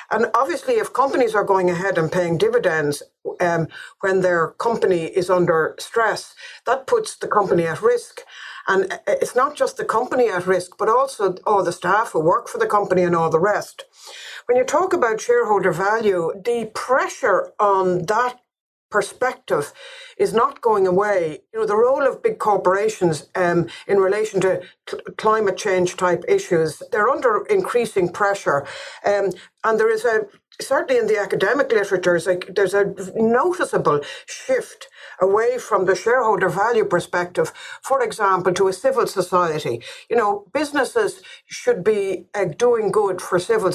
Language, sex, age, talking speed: English, female, 60-79, 160 wpm